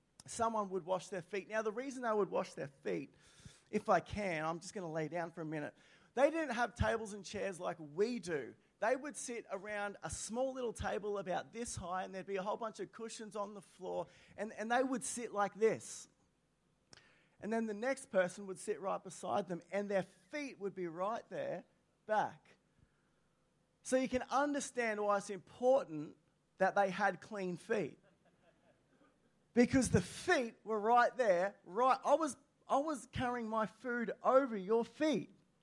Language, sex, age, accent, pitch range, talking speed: English, male, 30-49, Australian, 200-255 Hz, 185 wpm